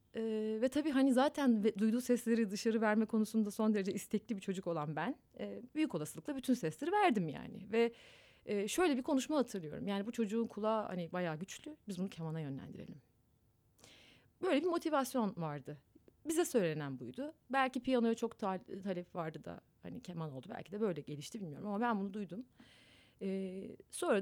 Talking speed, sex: 160 wpm, female